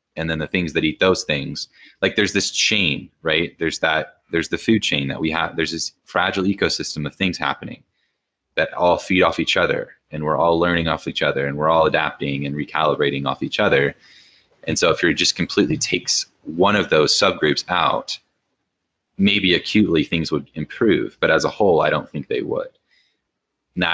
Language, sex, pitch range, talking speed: English, male, 75-100 Hz, 195 wpm